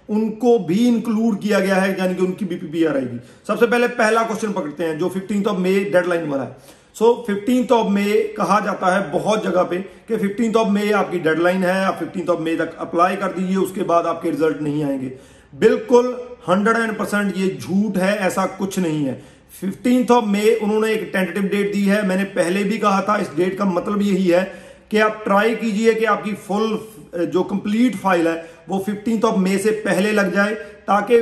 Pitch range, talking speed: 180-215 Hz, 175 wpm